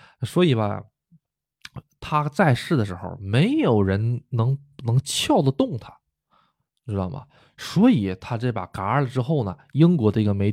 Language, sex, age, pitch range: Chinese, male, 20-39, 110-145 Hz